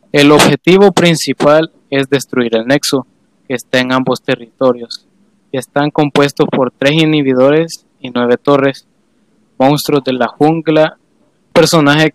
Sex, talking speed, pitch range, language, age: male, 125 wpm, 130-145 Hz, English, 20-39